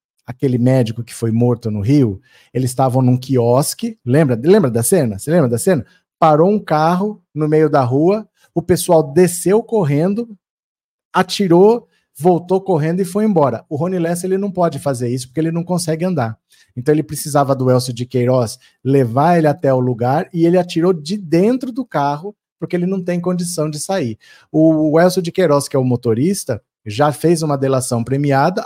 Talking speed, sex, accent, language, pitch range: 185 wpm, male, Brazilian, Portuguese, 135-185 Hz